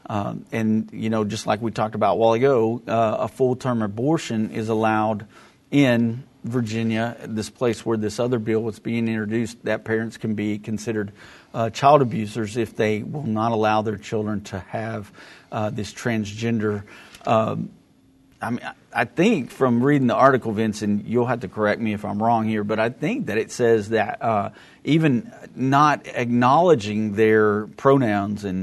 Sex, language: male, English